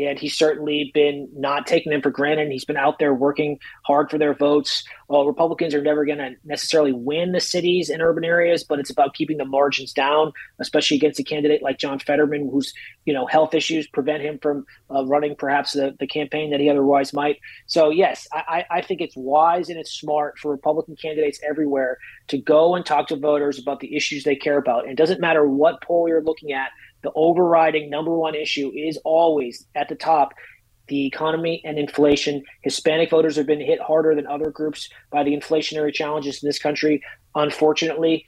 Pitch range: 145-160 Hz